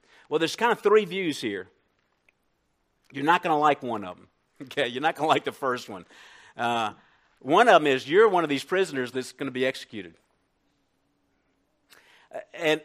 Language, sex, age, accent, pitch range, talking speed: English, male, 50-69, American, 130-175 Hz, 185 wpm